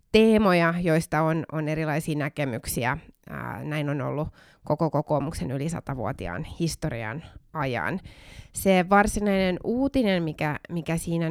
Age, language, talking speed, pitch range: 20-39, Finnish, 120 wpm, 155-190 Hz